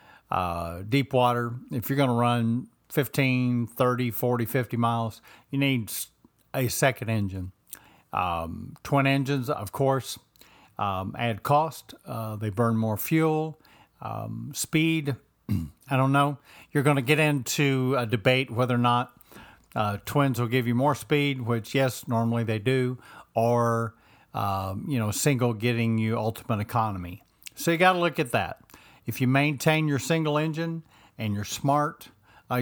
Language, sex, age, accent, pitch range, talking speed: English, male, 50-69, American, 110-140 Hz, 155 wpm